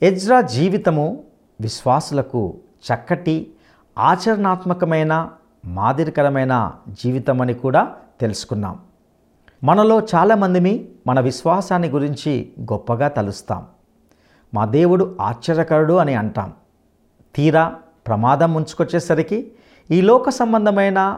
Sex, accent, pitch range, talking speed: male, Indian, 115-180 Hz, 75 wpm